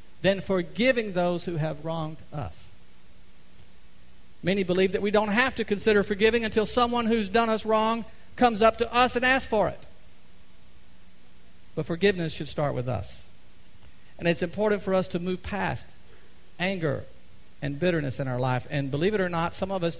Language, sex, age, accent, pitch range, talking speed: English, male, 50-69, American, 125-210 Hz, 175 wpm